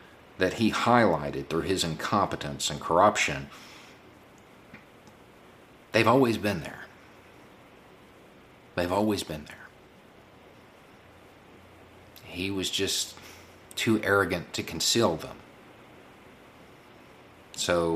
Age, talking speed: 50-69, 85 wpm